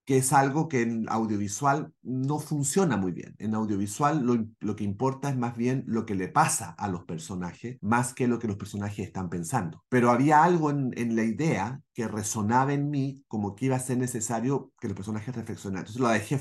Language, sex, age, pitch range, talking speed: Spanish, male, 40-59, 100-125 Hz, 210 wpm